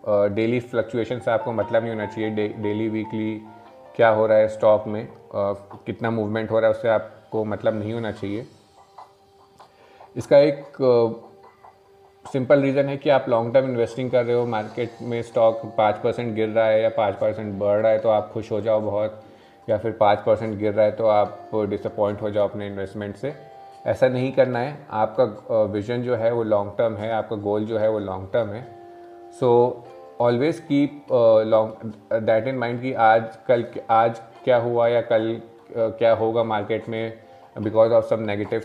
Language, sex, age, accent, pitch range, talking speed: Hindi, male, 30-49, native, 110-120 Hz, 190 wpm